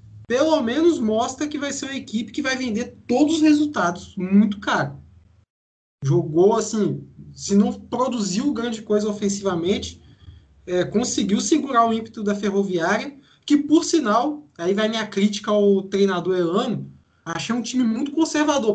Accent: Brazilian